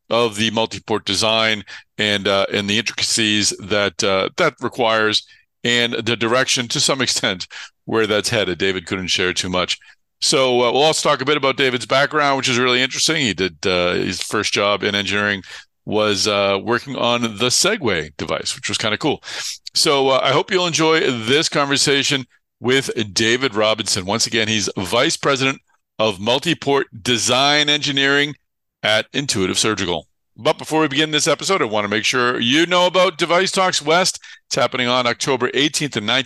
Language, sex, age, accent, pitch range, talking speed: English, male, 50-69, American, 110-140 Hz, 180 wpm